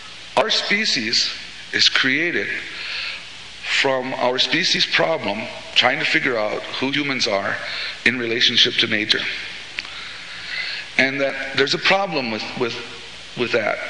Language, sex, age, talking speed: English, male, 50-69, 120 wpm